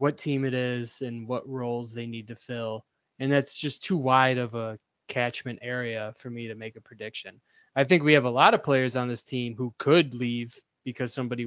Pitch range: 120-145 Hz